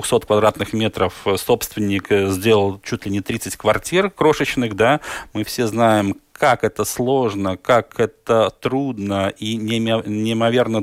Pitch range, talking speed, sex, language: 105-120 Hz, 120 wpm, male, Russian